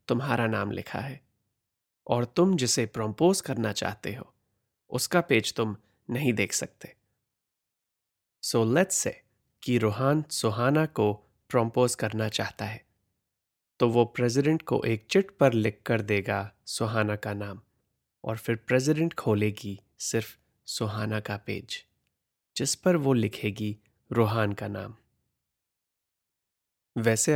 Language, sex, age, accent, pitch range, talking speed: Hindi, male, 30-49, native, 105-125 Hz, 125 wpm